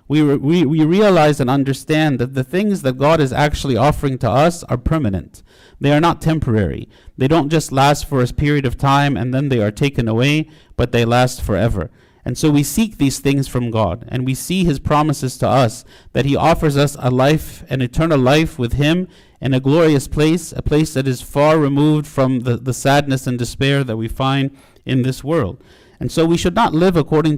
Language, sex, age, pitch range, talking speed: English, male, 50-69, 130-155 Hz, 210 wpm